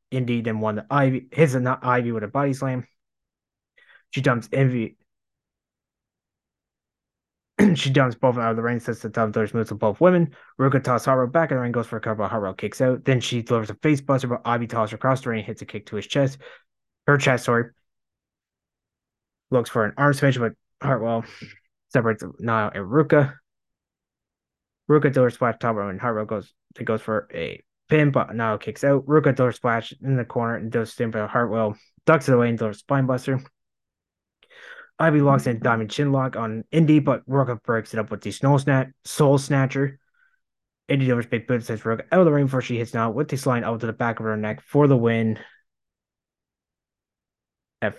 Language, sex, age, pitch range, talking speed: English, male, 20-39, 110-135 Hz, 200 wpm